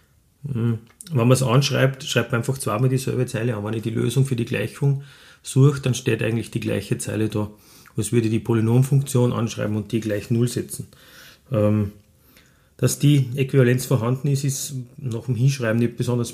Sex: male